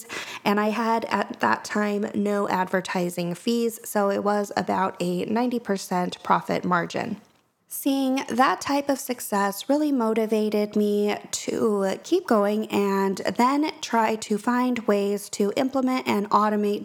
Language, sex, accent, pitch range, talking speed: English, female, American, 200-245 Hz, 135 wpm